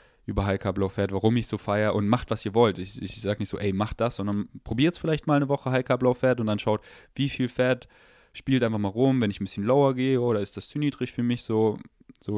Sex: male